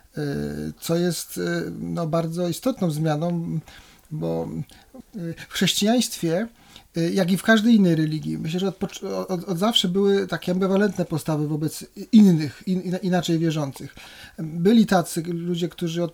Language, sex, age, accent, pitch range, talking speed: Polish, male, 40-59, native, 155-185 Hz, 125 wpm